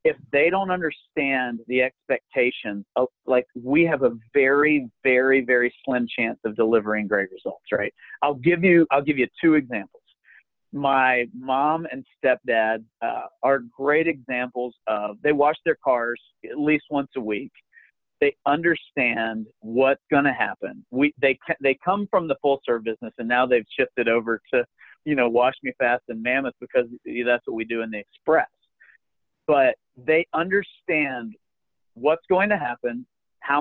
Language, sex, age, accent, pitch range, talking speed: English, male, 40-59, American, 120-150 Hz, 160 wpm